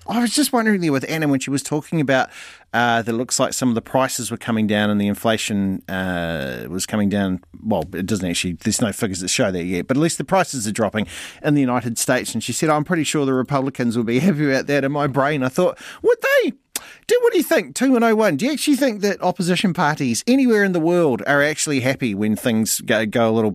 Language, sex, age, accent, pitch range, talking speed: English, male, 40-59, Australian, 110-185 Hz, 250 wpm